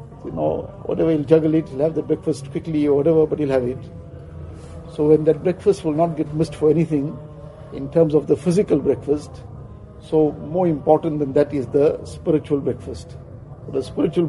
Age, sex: 50-69, male